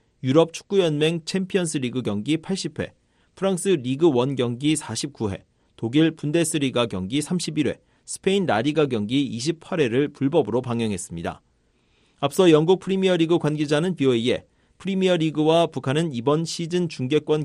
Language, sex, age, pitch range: Korean, male, 40-59, 125-170 Hz